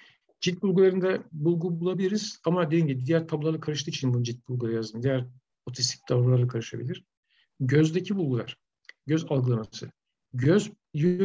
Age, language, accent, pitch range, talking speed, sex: 50-69, Turkish, native, 125-165 Hz, 125 wpm, male